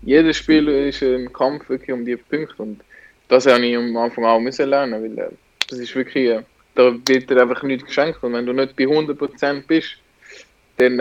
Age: 20-39